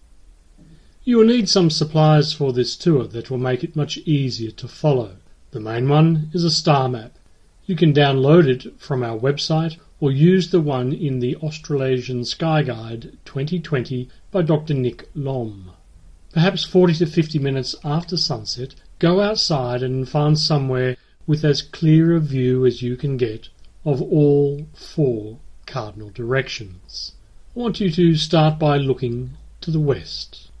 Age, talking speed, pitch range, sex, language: 40-59, 155 wpm, 125-160 Hz, male, English